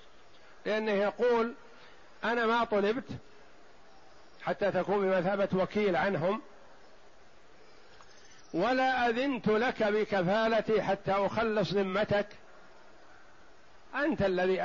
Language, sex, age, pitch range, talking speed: Arabic, male, 50-69, 180-220 Hz, 80 wpm